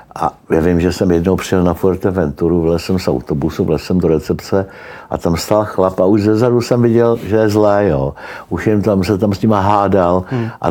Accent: native